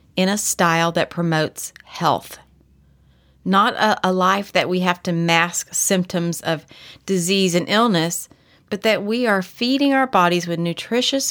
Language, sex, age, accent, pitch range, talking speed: English, female, 30-49, American, 175-230 Hz, 155 wpm